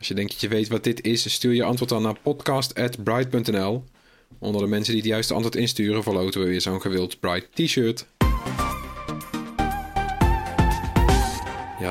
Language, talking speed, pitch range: Dutch, 155 wpm, 110-125 Hz